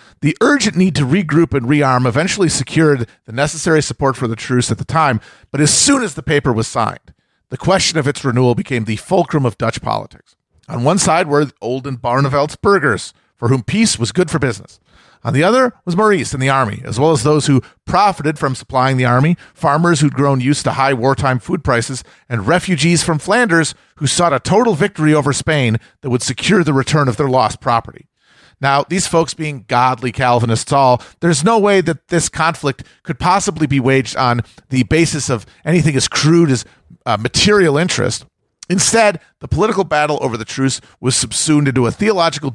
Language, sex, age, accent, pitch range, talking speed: English, male, 40-59, American, 125-165 Hz, 195 wpm